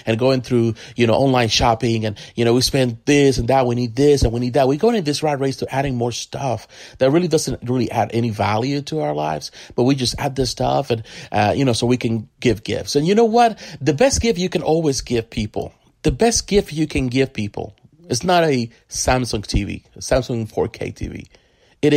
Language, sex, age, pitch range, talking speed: English, male, 40-59, 115-150 Hz, 235 wpm